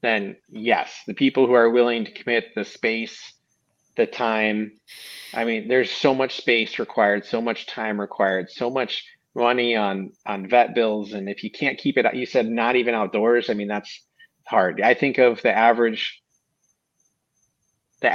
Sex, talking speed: male, 170 wpm